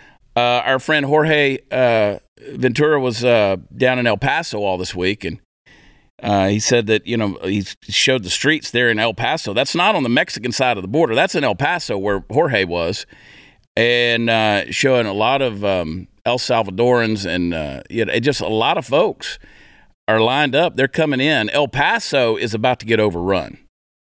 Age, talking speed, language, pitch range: 50-69, 195 wpm, English, 105-145 Hz